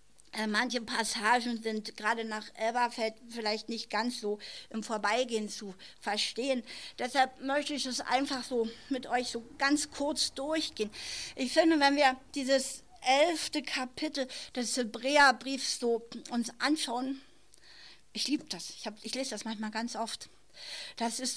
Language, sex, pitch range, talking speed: German, female, 230-285 Hz, 145 wpm